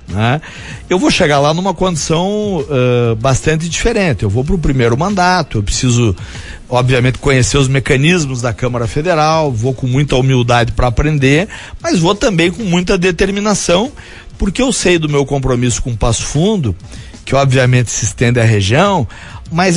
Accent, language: Brazilian, Portuguese